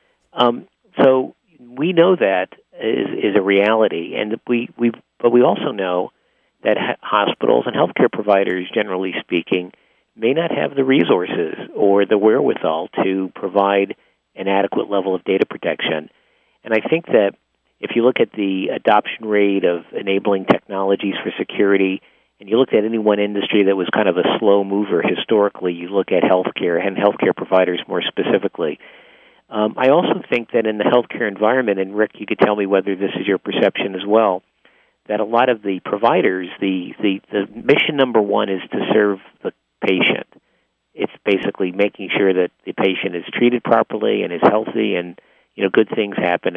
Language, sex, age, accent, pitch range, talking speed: English, male, 50-69, American, 95-115 Hz, 180 wpm